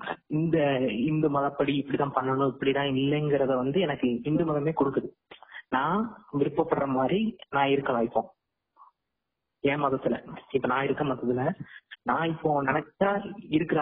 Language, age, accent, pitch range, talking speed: Tamil, 20-39, native, 130-165 Hz, 110 wpm